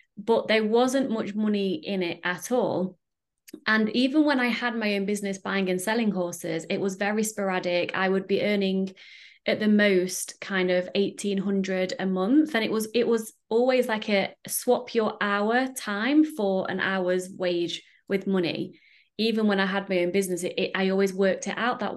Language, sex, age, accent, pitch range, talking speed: English, female, 20-39, British, 185-225 Hz, 185 wpm